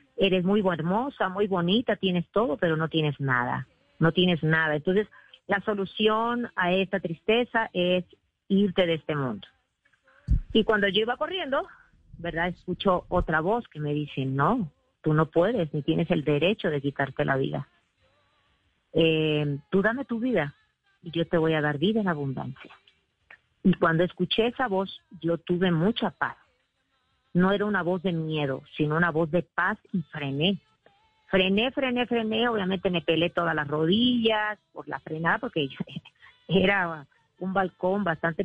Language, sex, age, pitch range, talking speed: Spanish, female, 40-59, 160-205 Hz, 160 wpm